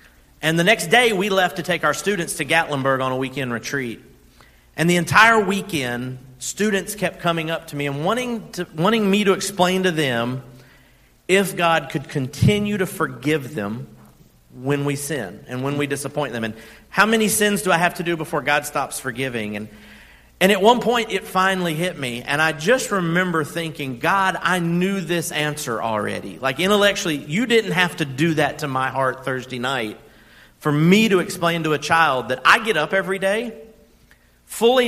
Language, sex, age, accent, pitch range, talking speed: English, male, 40-59, American, 150-195 Hz, 190 wpm